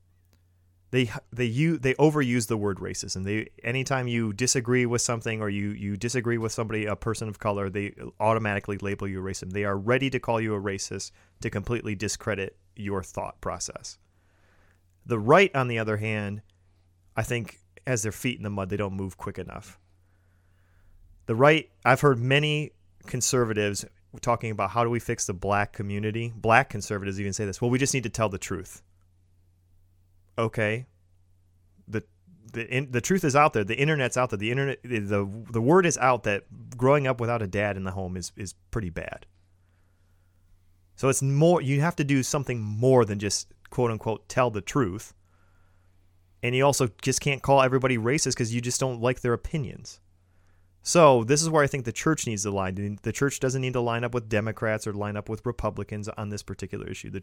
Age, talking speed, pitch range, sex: 30-49, 195 wpm, 95-125 Hz, male